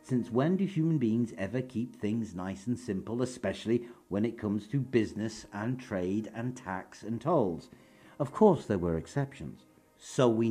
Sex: male